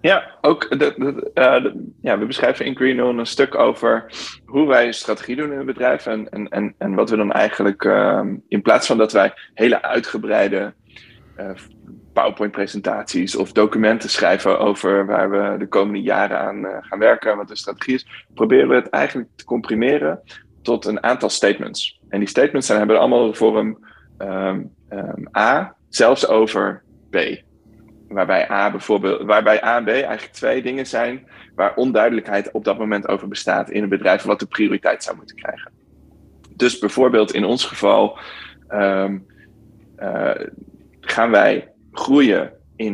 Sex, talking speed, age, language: male, 160 wpm, 20-39, Dutch